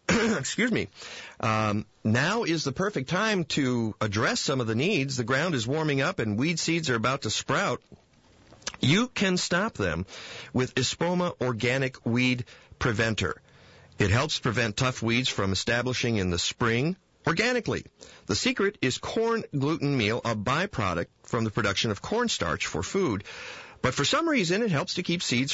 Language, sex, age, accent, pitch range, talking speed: English, male, 50-69, American, 110-155 Hz, 165 wpm